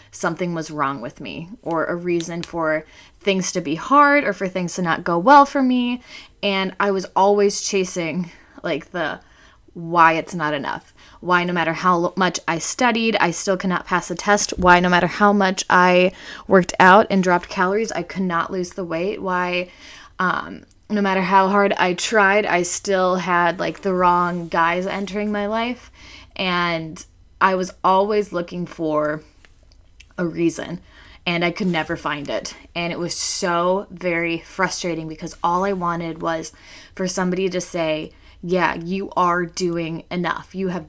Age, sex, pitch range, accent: 20-39, female, 165-190 Hz, American